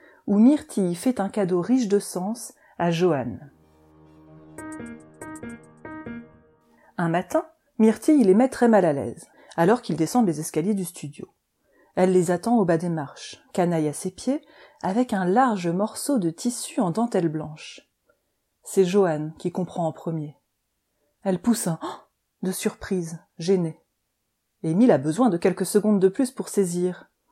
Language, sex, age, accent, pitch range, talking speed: French, female, 30-49, French, 170-220 Hz, 150 wpm